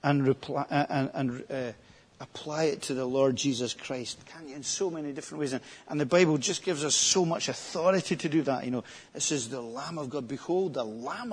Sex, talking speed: male, 230 wpm